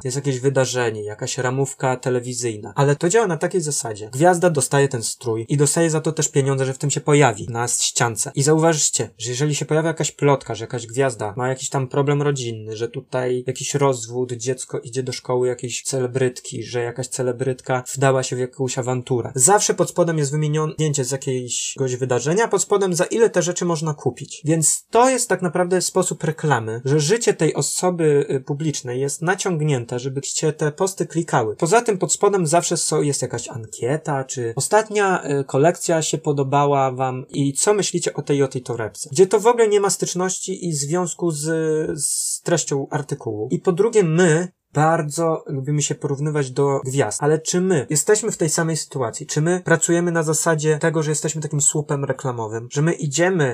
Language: Polish